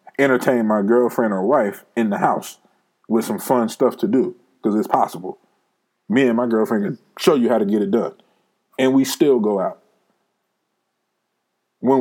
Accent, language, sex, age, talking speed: American, English, male, 20-39, 175 wpm